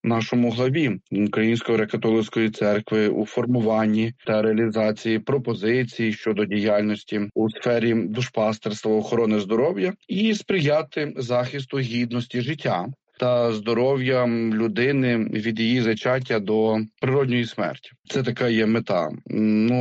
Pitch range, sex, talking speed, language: 110-135 Hz, male, 110 wpm, Ukrainian